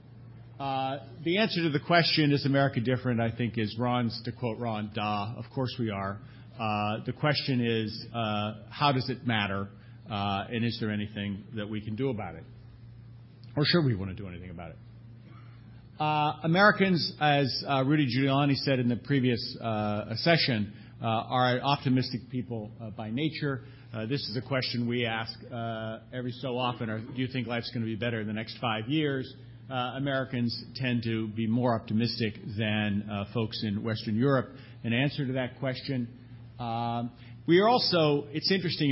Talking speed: 180 wpm